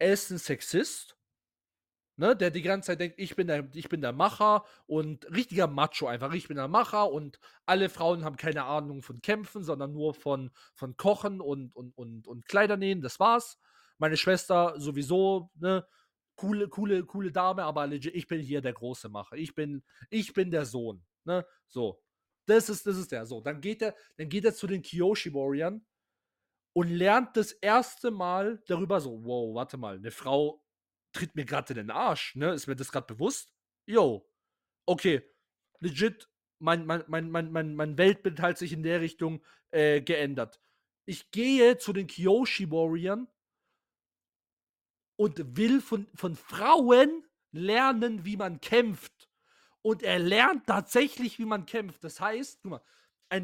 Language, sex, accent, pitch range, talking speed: German, male, German, 150-205 Hz, 170 wpm